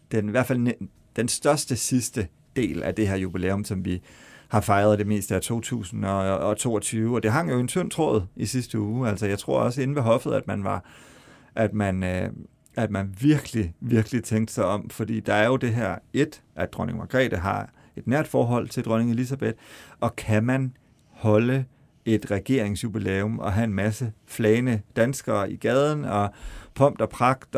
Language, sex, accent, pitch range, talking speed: Danish, male, native, 105-125 Hz, 185 wpm